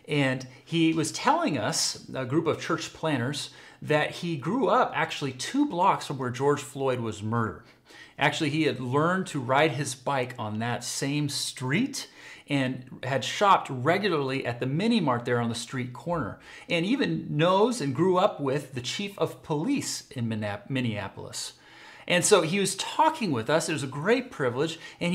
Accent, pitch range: American, 125-175 Hz